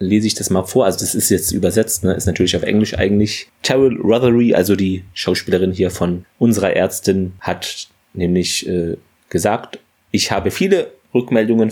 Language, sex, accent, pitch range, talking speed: German, male, German, 95-115 Hz, 170 wpm